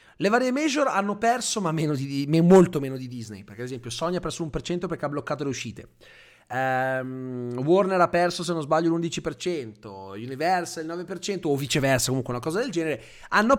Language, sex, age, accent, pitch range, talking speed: Italian, male, 30-49, native, 125-180 Hz, 195 wpm